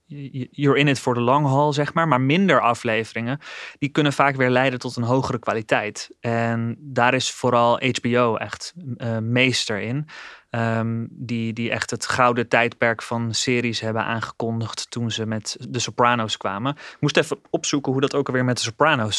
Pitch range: 115-135 Hz